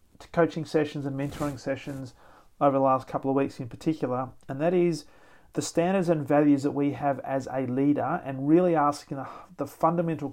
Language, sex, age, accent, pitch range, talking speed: English, male, 40-59, Australian, 135-160 Hz, 180 wpm